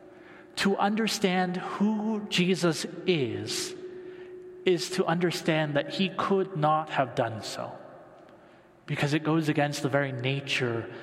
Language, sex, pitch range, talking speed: English, male, 150-185 Hz, 120 wpm